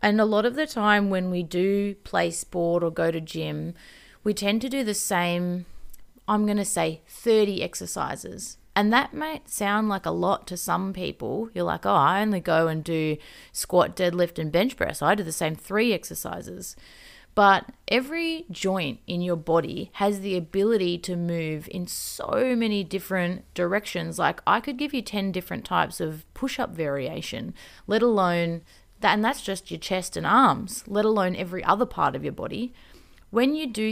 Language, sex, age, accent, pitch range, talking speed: English, female, 30-49, Australian, 175-210 Hz, 180 wpm